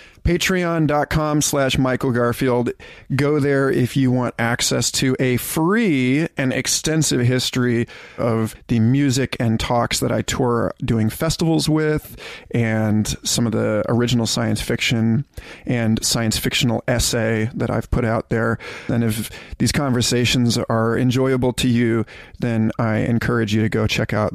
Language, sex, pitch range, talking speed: English, male, 115-140 Hz, 145 wpm